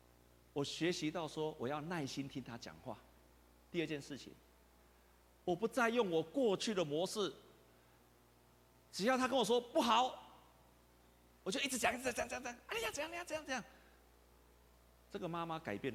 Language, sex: Chinese, male